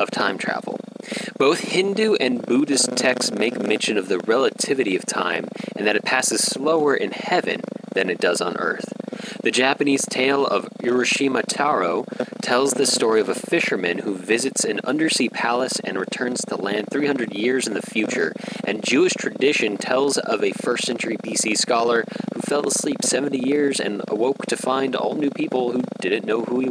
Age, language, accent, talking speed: 20-39, English, American, 180 wpm